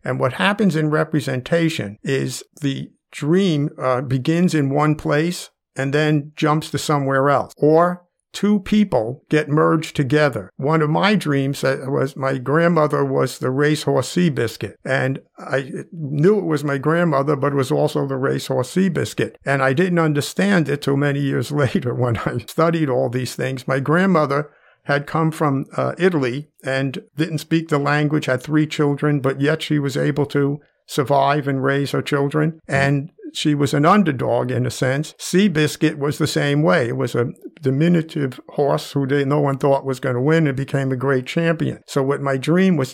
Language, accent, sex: English, American, male